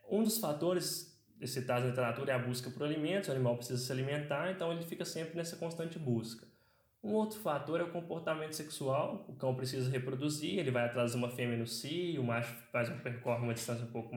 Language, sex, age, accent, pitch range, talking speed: Portuguese, male, 10-29, Brazilian, 125-160 Hz, 210 wpm